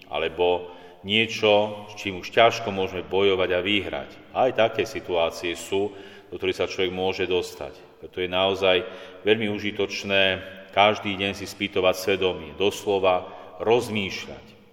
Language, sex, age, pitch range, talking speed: Slovak, male, 40-59, 90-105 Hz, 130 wpm